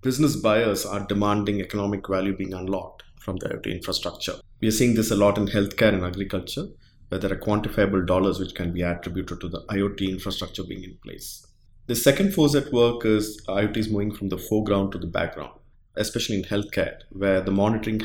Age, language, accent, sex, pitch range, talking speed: 20-39, English, Indian, male, 95-105 Hz, 195 wpm